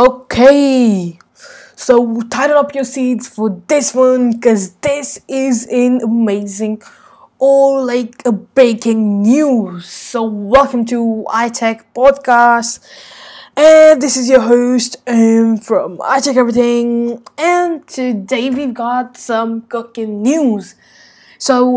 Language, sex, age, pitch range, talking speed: English, female, 10-29, 215-250 Hz, 115 wpm